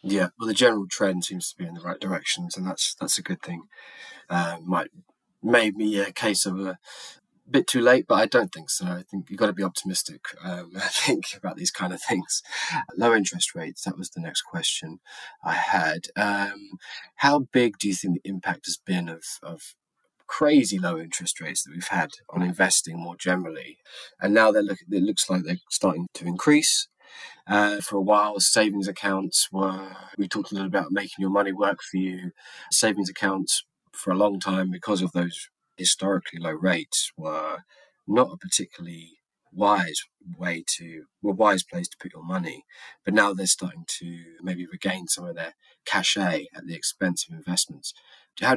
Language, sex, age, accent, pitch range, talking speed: English, male, 20-39, British, 90-105 Hz, 190 wpm